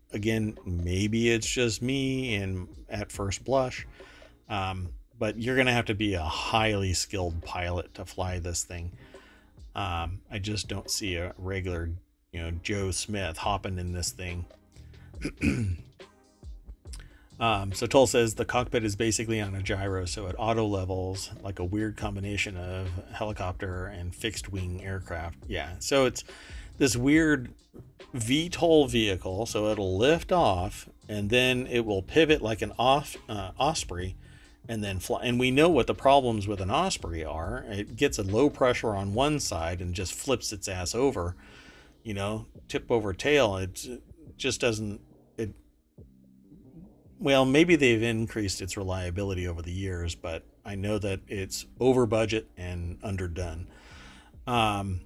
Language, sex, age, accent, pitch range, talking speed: English, male, 40-59, American, 90-115 Hz, 155 wpm